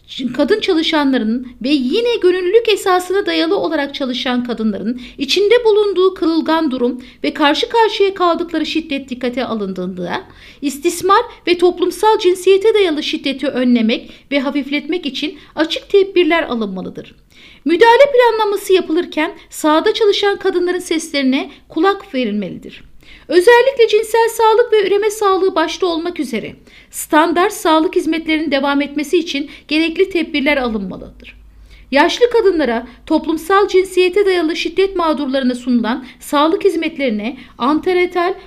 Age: 50-69